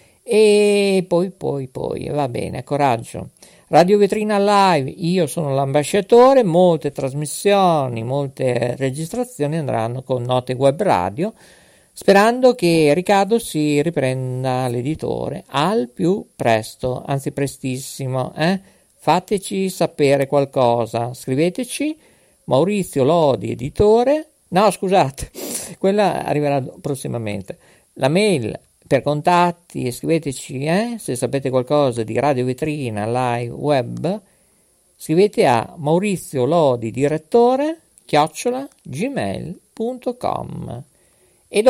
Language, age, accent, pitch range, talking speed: Italian, 50-69, native, 130-200 Hz, 100 wpm